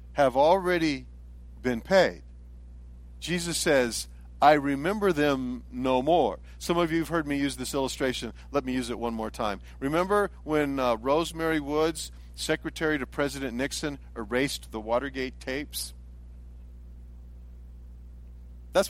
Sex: male